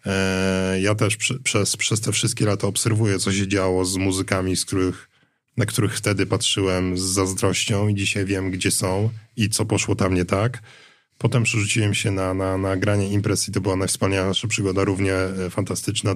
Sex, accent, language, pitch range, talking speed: male, native, Polish, 100-110 Hz, 180 wpm